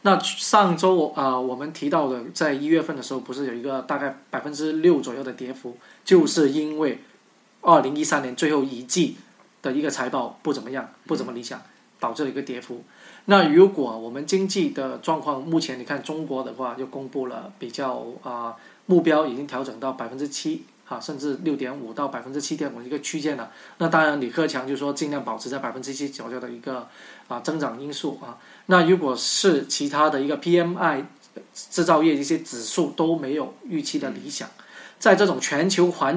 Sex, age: male, 20-39